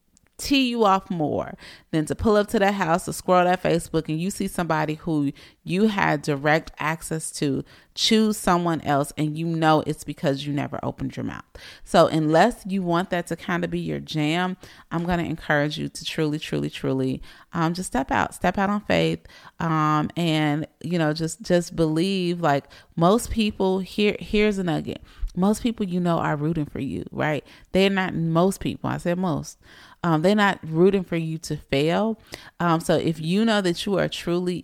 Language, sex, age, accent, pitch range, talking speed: English, female, 30-49, American, 155-195 Hz, 195 wpm